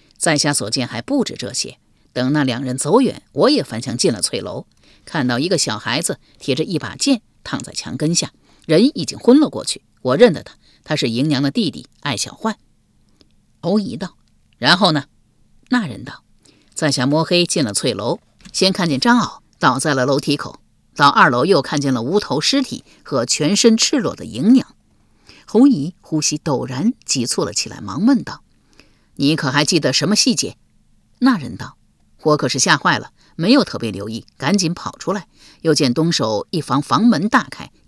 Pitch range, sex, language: 135-225 Hz, female, Chinese